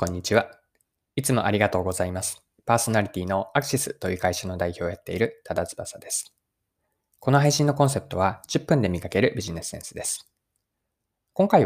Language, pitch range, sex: Japanese, 90-145 Hz, male